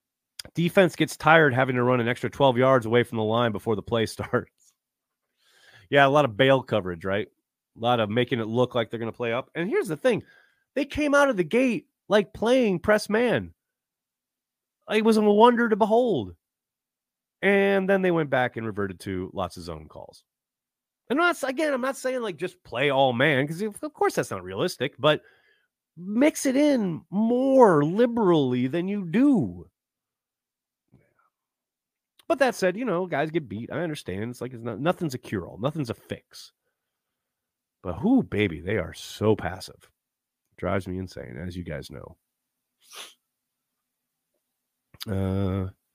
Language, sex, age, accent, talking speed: English, male, 30-49, American, 170 wpm